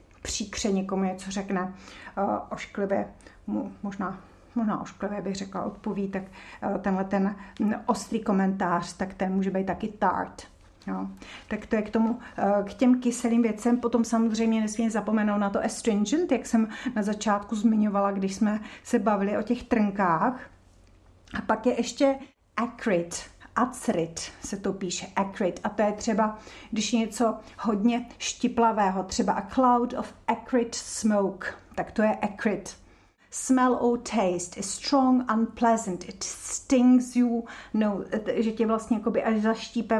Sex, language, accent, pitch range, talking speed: female, Czech, native, 195-230 Hz, 150 wpm